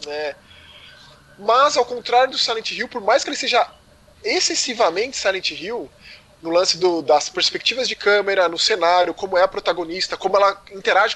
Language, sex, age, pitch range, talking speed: Portuguese, male, 20-39, 180-245 Hz, 155 wpm